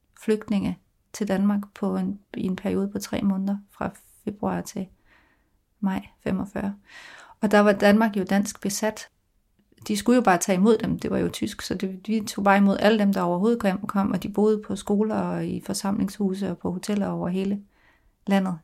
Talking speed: 185 wpm